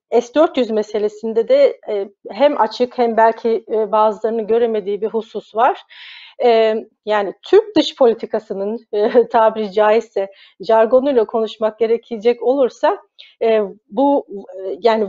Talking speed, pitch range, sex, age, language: 95 wpm, 210-265 Hz, female, 40-59, Turkish